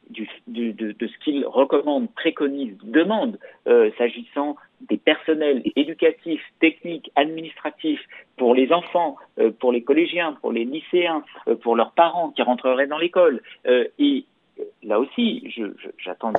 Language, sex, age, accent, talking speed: French, male, 50-69, French, 130 wpm